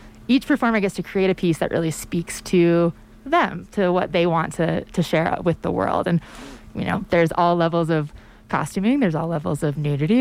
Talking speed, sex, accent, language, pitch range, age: 205 wpm, female, American, English, 155-195 Hz, 20-39